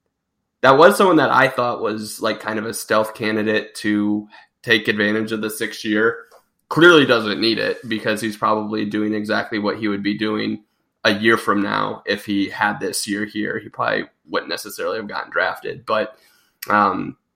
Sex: male